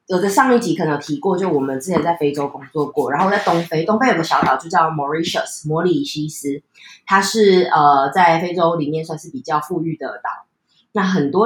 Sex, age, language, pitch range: female, 20-39, Chinese, 150-195 Hz